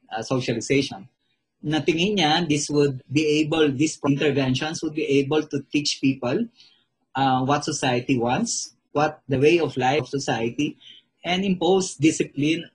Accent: native